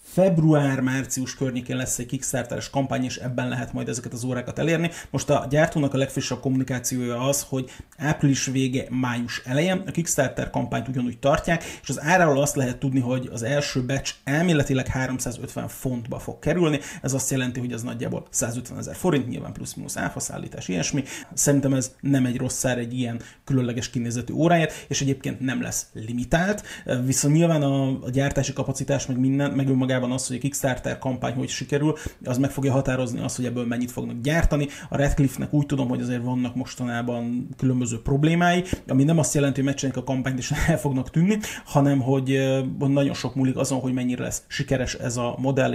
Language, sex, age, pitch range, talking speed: Hungarian, male, 30-49, 125-140 Hz, 175 wpm